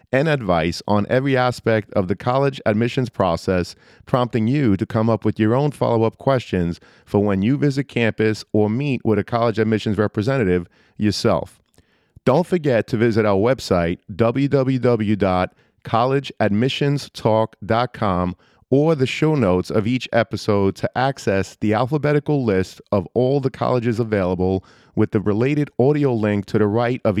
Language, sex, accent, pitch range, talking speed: English, male, American, 105-135 Hz, 145 wpm